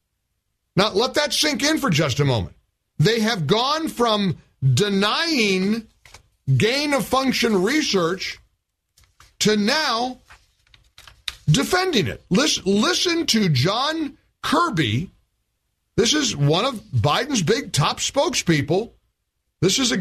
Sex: male